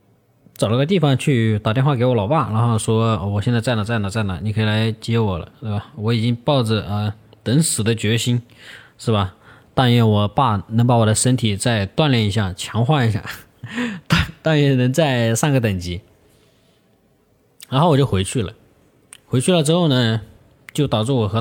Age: 20-39